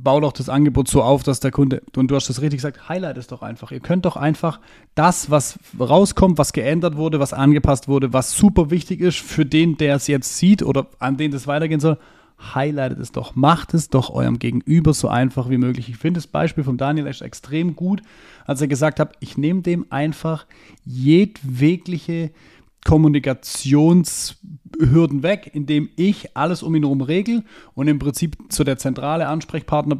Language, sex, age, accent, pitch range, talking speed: German, male, 30-49, German, 135-160 Hz, 190 wpm